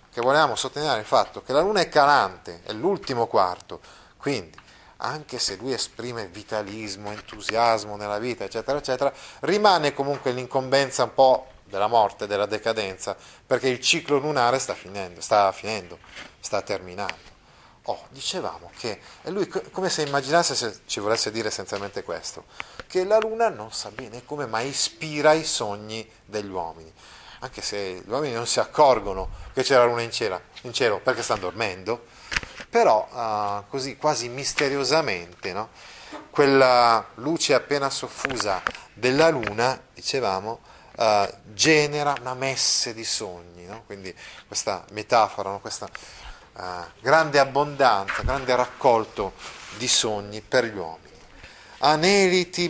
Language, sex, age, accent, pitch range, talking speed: Italian, male, 30-49, native, 105-145 Hz, 140 wpm